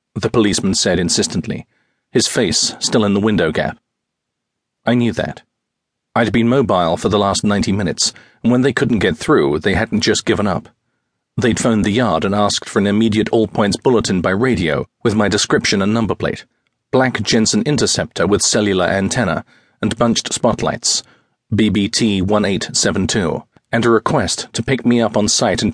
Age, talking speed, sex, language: 40-59, 165 wpm, male, English